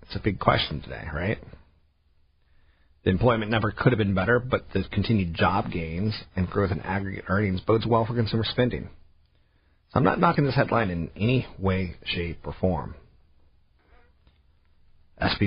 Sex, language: male, English